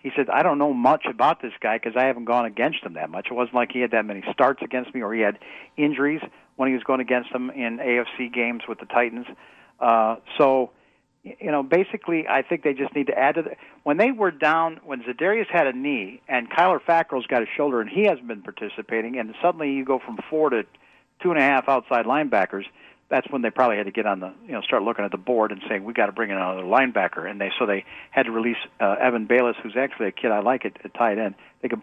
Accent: American